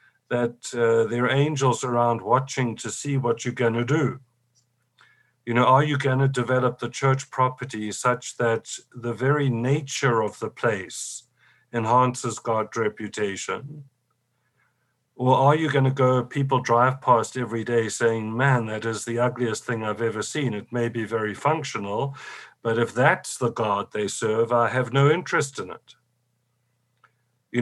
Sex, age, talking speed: male, 50-69, 165 wpm